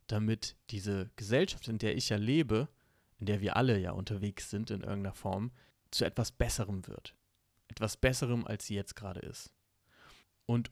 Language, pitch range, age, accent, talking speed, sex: German, 100-125 Hz, 30-49, German, 170 wpm, male